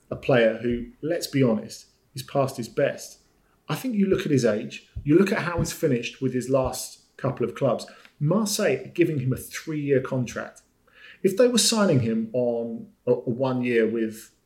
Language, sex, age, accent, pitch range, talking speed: English, male, 40-59, British, 120-160 Hz, 185 wpm